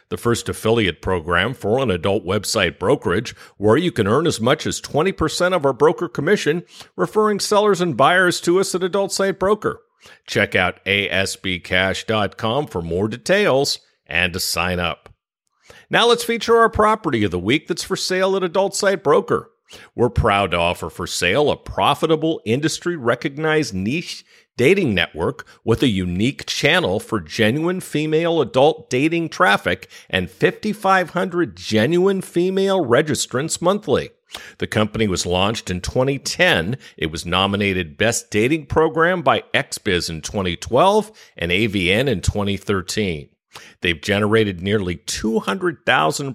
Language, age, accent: English, 50-69, American